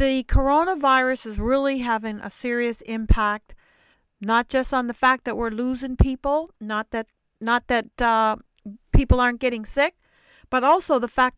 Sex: female